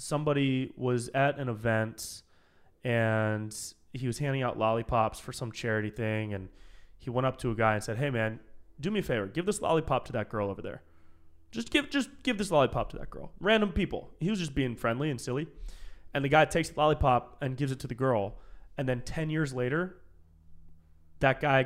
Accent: American